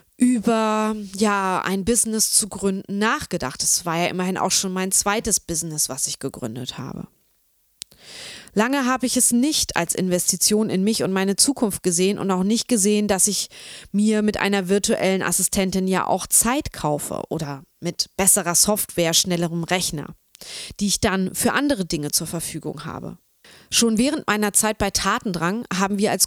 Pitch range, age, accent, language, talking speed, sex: 180-220 Hz, 20-39, German, German, 165 wpm, female